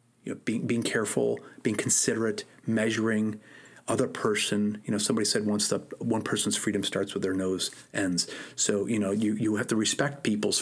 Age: 30-49